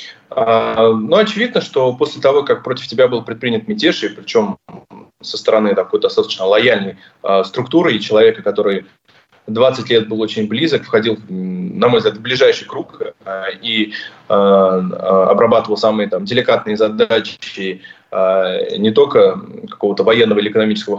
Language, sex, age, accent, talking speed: Russian, male, 20-39, native, 140 wpm